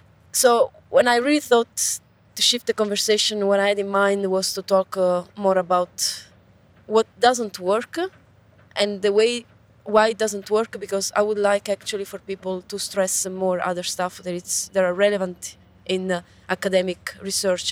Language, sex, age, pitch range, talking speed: English, female, 20-39, 185-210 Hz, 175 wpm